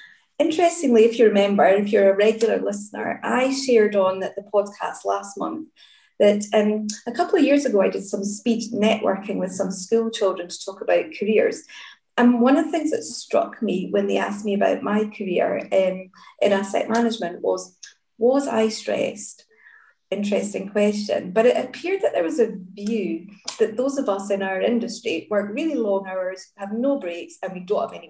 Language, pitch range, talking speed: English, 200-255 Hz, 190 wpm